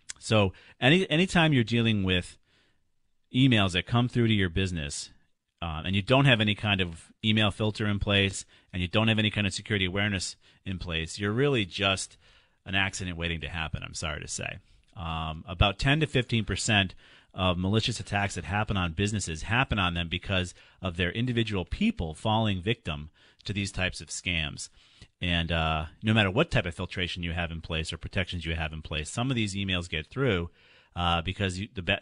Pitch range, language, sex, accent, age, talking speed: 85-105 Hz, English, male, American, 40-59, 190 wpm